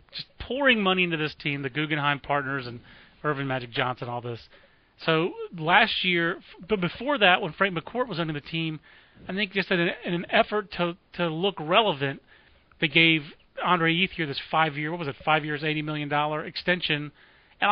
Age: 30-49